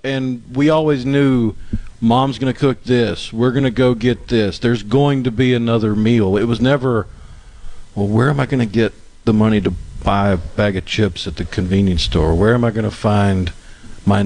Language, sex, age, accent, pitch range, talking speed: English, male, 50-69, American, 100-130 Hz, 195 wpm